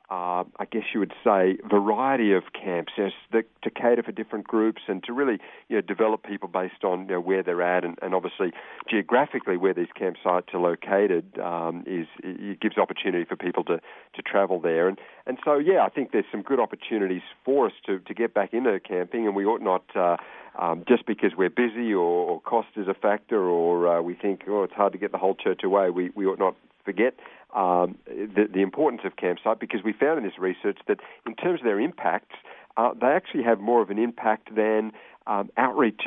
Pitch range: 90-110 Hz